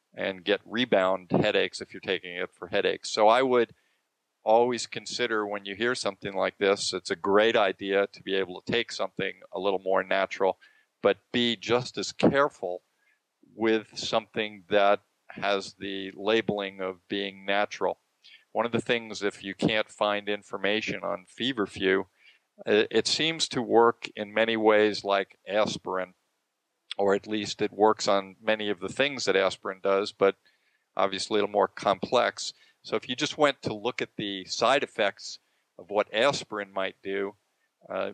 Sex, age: male, 40-59